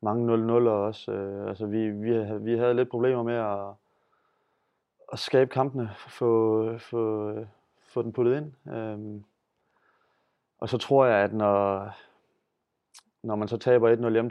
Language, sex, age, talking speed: Danish, male, 30-49, 150 wpm